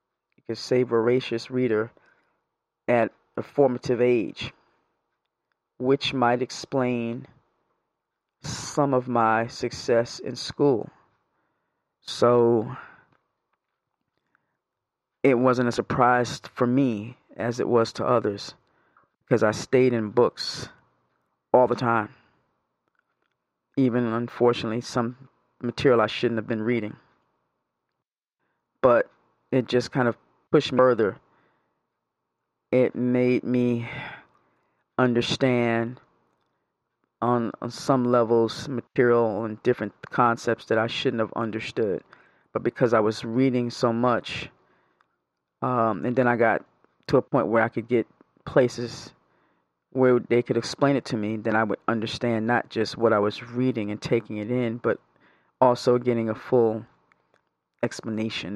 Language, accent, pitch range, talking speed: English, American, 115-125 Hz, 120 wpm